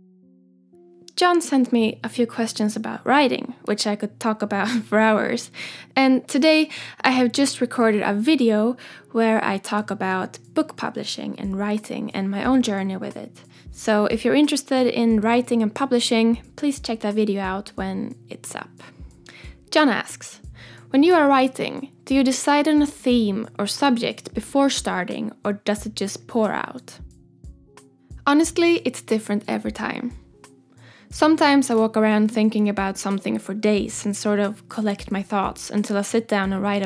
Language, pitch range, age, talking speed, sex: English, 205-245 Hz, 10-29, 165 wpm, female